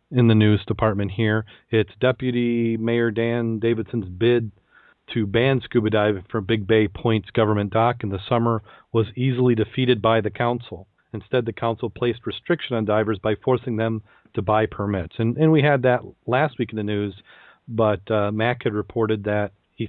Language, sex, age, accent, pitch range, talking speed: English, male, 40-59, American, 105-120 Hz, 180 wpm